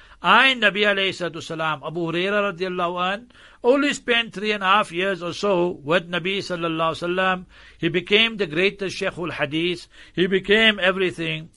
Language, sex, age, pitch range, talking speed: English, male, 60-79, 170-200 Hz, 165 wpm